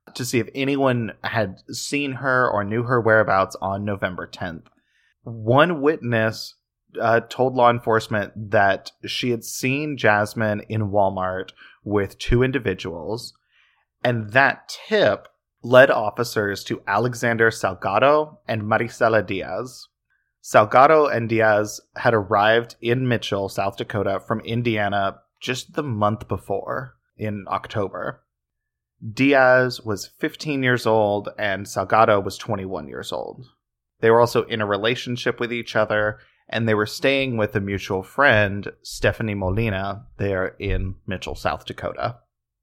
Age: 20-39